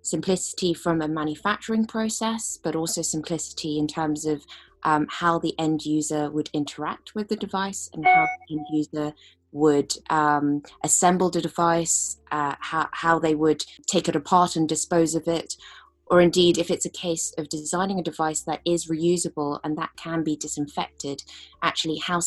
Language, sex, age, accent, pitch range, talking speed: English, female, 20-39, British, 150-175 Hz, 170 wpm